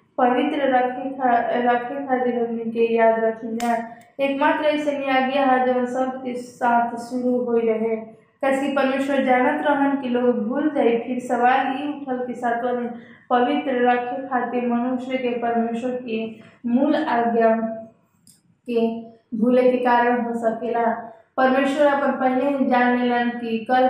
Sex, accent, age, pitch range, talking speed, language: female, native, 20-39, 230-260 Hz, 130 wpm, Hindi